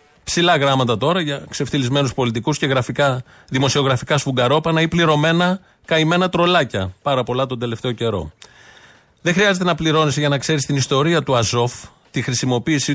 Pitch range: 120-155 Hz